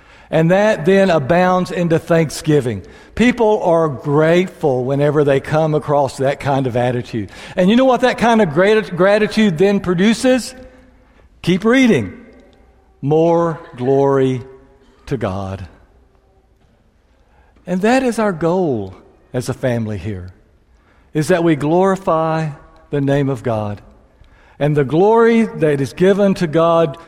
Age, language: 60-79, English